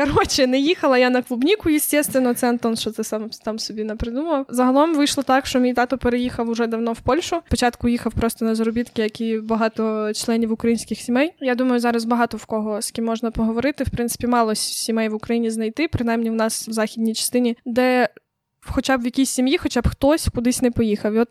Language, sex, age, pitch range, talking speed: Ukrainian, female, 20-39, 230-265 Hz, 210 wpm